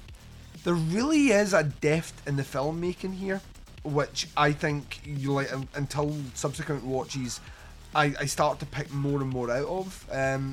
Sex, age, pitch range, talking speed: male, 30-49, 130-170 Hz, 165 wpm